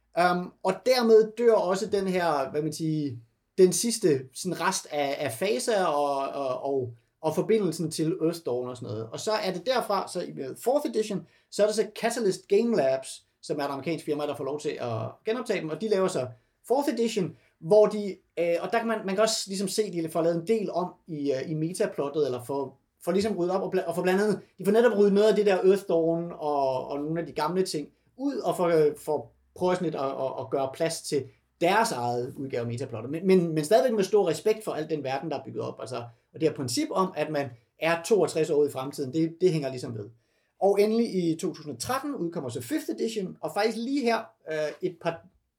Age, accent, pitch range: 30-49, native, 145-205 Hz